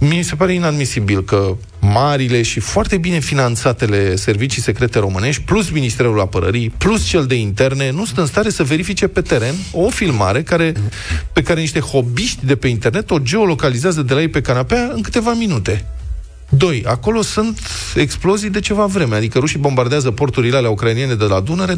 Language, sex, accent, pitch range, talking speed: Romanian, male, native, 110-165 Hz, 175 wpm